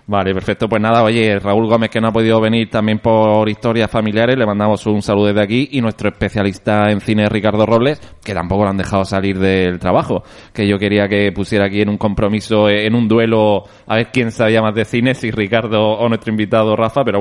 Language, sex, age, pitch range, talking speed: Spanish, male, 30-49, 100-125 Hz, 220 wpm